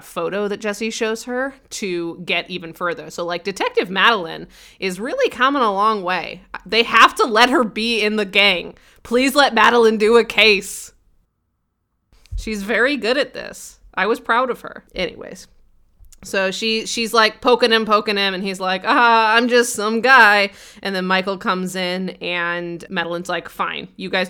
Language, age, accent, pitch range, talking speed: English, 20-39, American, 175-215 Hz, 180 wpm